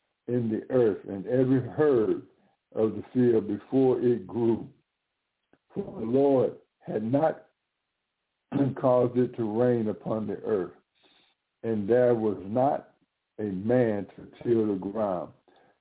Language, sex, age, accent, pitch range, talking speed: English, male, 60-79, American, 105-130 Hz, 130 wpm